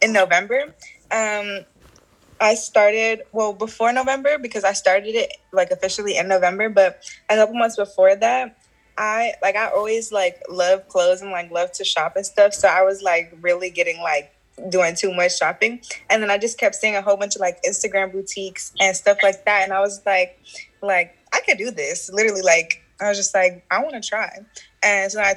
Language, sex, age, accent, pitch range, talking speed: English, female, 20-39, American, 185-215 Hz, 205 wpm